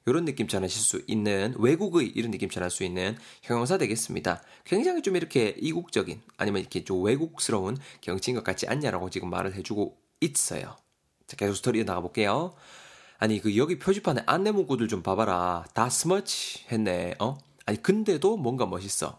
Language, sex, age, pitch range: Korean, male, 20-39, 100-165 Hz